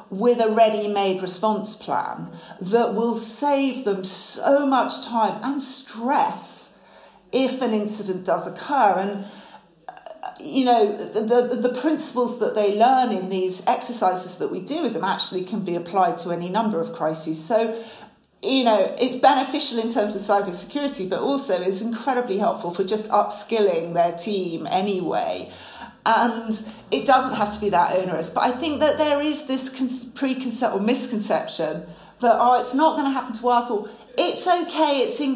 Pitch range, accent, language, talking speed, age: 195-255 Hz, British, English, 170 wpm, 40-59